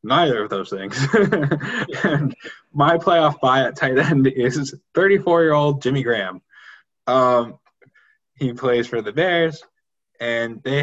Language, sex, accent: English, male, American